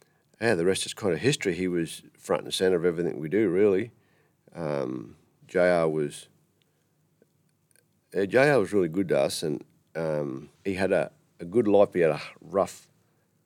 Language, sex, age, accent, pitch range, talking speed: English, male, 40-59, Australian, 75-90 Hz, 175 wpm